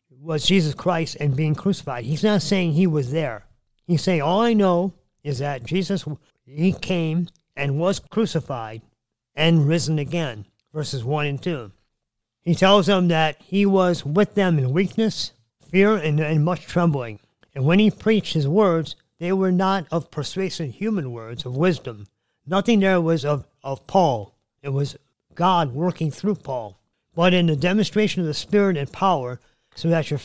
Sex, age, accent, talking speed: male, 50-69, American, 170 wpm